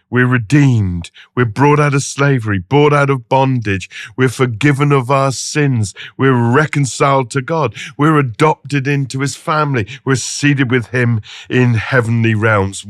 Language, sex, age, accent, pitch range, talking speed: English, male, 50-69, British, 130-180 Hz, 150 wpm